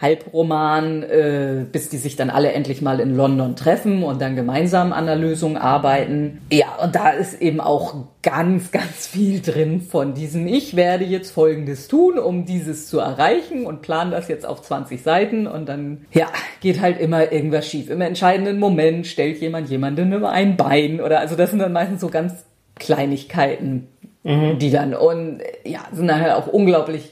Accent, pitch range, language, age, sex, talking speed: German, 145-180 Hz, German, 40-59, female, 175 wpm